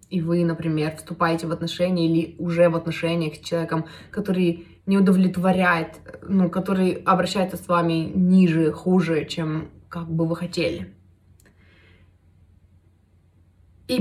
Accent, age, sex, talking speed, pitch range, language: native, 20-39, female, 120 wpm, 165-220 Hz, Russian